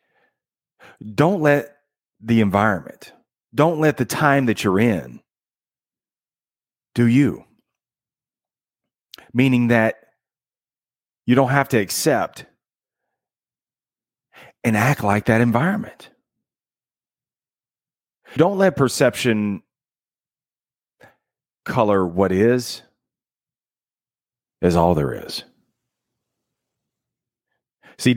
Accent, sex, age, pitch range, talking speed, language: American, male, 40-59, 100-135 Hz, 75 wpm, English